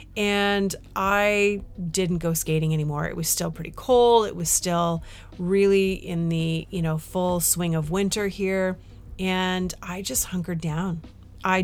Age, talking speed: 30-49, 155 wpm